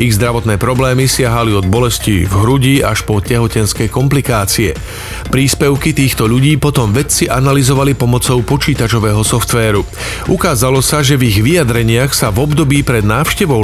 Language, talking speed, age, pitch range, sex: Slovak, 140 wpm, 40-59, 110-135 Hz, male